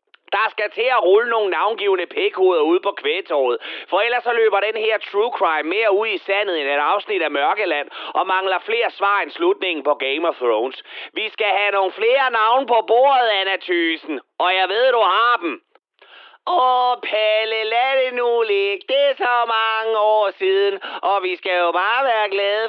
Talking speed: 195 wpm